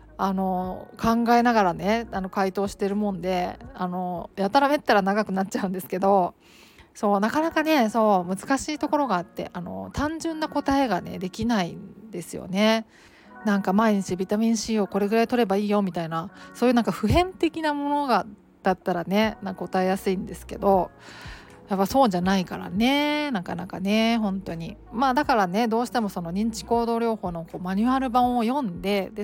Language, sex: Japanese, female